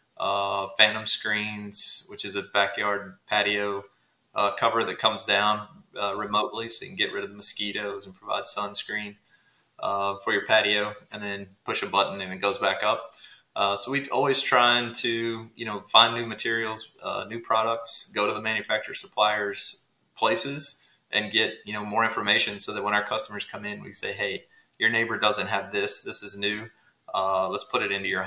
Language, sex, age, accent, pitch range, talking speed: English, male, 30-49, American, 100-115 Hz, 195 wpm